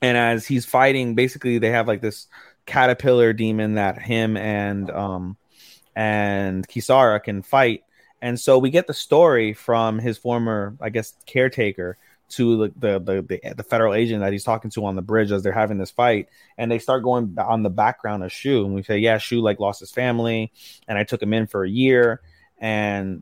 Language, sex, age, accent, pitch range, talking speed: English, male, 20-39, American, 105-125 Hz, 200 wpm